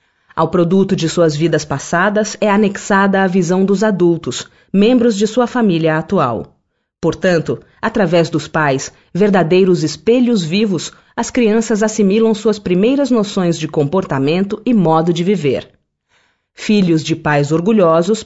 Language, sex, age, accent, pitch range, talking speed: Portuguese, female, 40-59, Brazilian, 160-210 Hz, 130 wpm